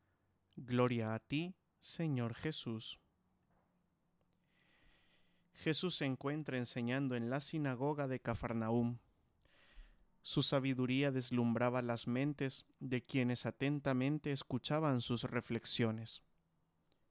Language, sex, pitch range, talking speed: English, male, 120-145 Hz, 90 wpm